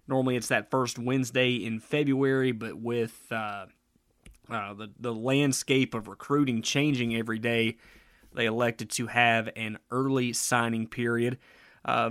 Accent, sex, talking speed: American, male, 140 wpm